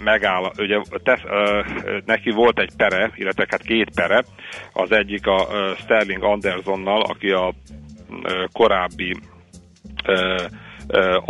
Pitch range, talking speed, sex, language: 90-100 Hz, 110 wpm, male, Hungarian